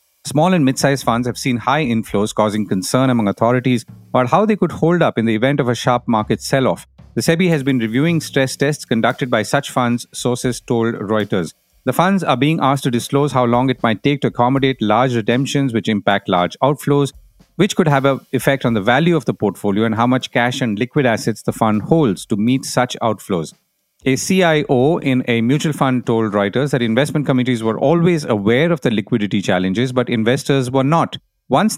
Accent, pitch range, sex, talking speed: Indian, 115-145 Hz, male, 205 wpm